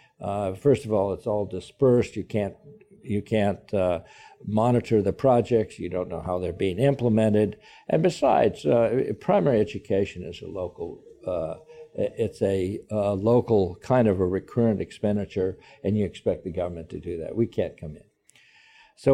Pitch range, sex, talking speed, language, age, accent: 95-120 Hz, male, 165 wpm, English, 60-79, American